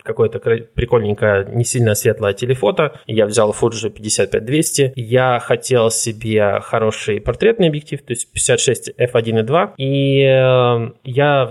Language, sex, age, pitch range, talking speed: Russian, male, 20-39, 110-135 Hz, 115 wpm